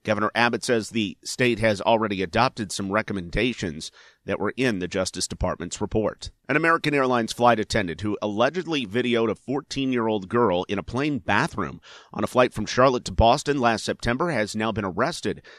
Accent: American